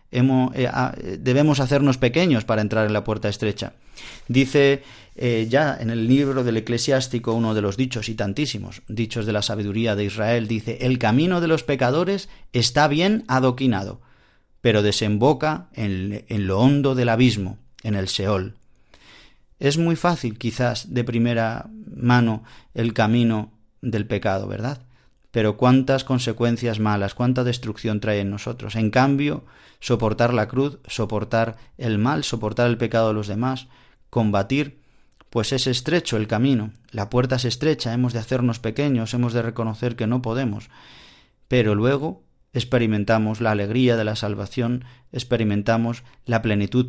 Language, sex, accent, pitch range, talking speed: Spanish, male, Spanish, 110-130 Hz, 145 wpm